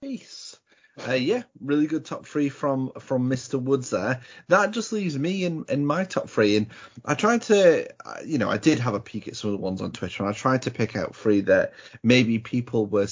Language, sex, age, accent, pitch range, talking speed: English, male, 30-49, British, 105-140 Hz, 235 wpm